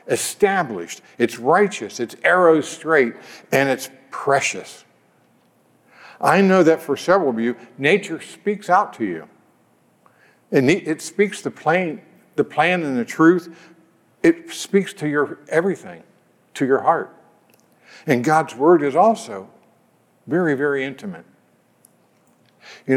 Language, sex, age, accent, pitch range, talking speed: English, male, 60-79, American, 135-200 Hz, 125 wpm